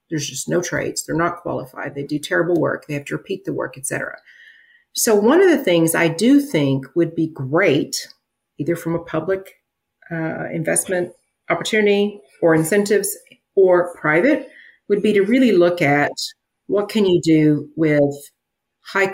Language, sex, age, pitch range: English, female, 40-59, 145-185 Hz